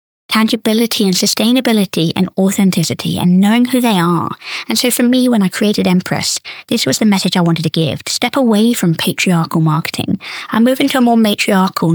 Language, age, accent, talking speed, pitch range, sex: English, 20-39, British, 190 wpm, 180-240 Hz, female